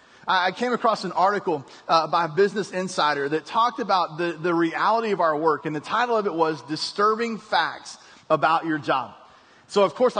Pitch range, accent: 175-230 Hz, American